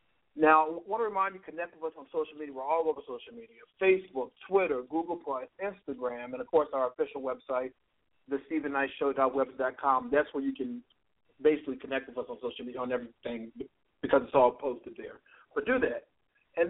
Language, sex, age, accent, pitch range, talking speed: English, male, 50-69, American, 125-155 Hz, 185 wpm